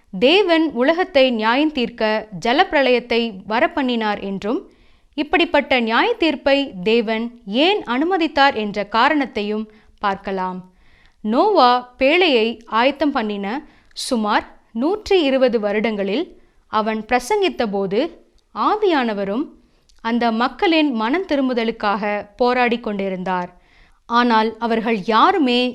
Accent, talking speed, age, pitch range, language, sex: native, 85 wpm, 20-39, 215-295 Hz, Tamil, female